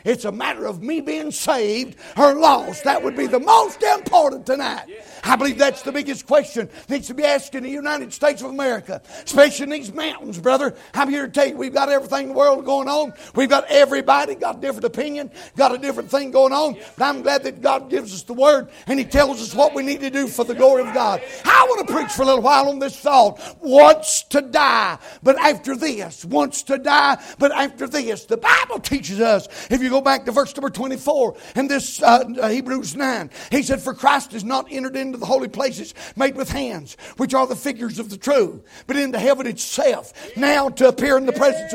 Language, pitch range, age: English, 260-285 Hz, 60-79